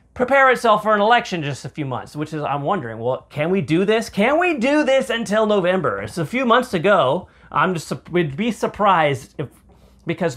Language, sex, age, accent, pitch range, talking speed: English, male, 30-49, American, 145-205 Hz, 215 wpm